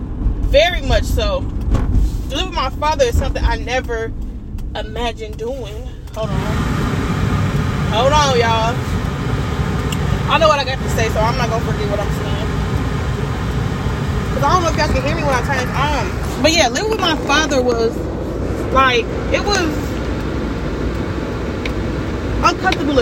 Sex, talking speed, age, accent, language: female, 155 wpm, 20-39, American, English